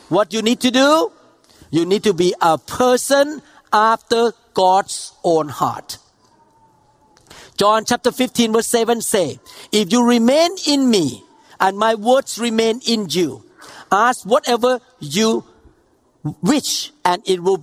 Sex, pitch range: male, 195-240 Hz